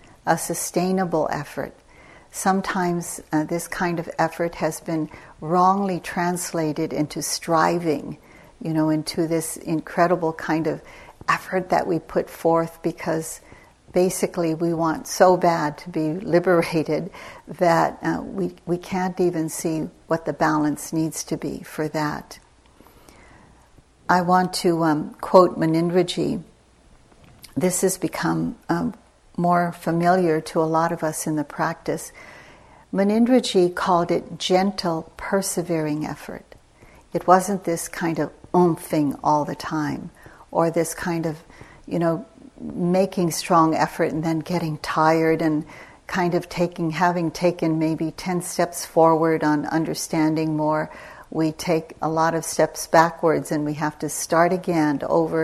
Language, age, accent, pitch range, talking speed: English, 60-79, American, 155-175 Hz, 135 wpm